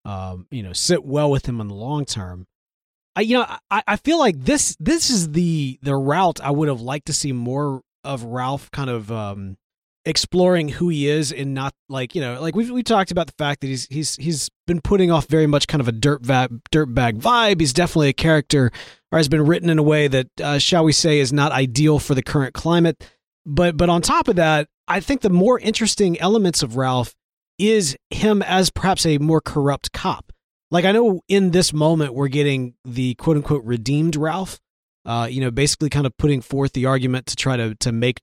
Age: 30-49